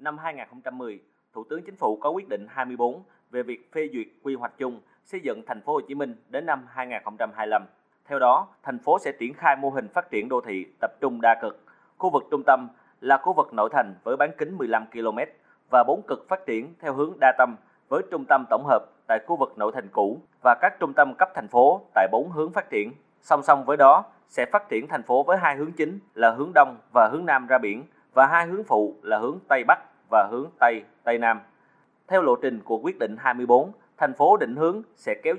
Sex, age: male, 20-39